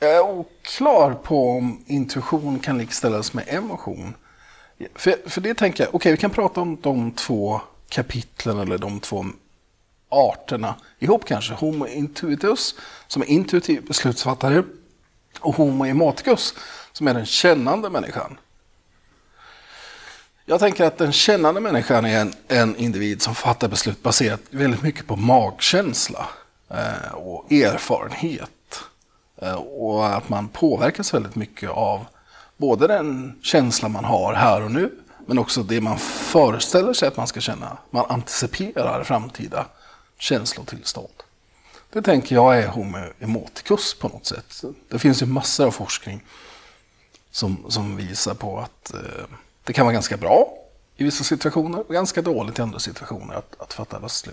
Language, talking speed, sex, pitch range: Swedish, 145 wpm, male, 115-165 Hz